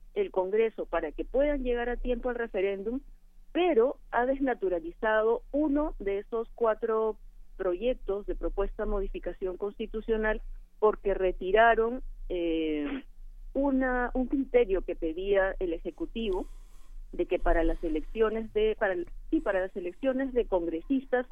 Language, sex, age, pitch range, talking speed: Spanish, female, 40-59, 180-245 Hz, 130 wpm